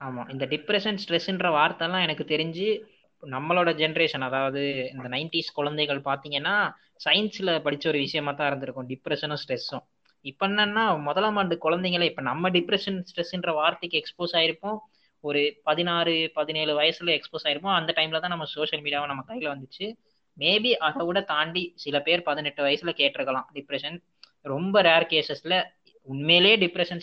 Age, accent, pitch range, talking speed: 20-39, native, 145-185 Hz, 140 wpm